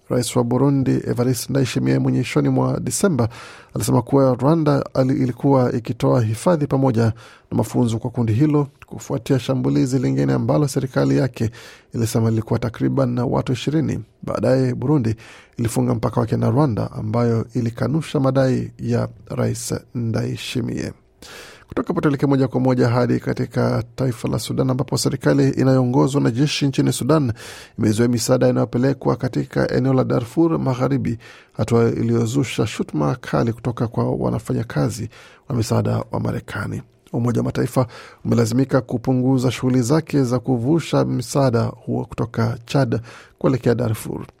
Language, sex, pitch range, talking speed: Swahili, male, 120-135 Hz, 130 wpm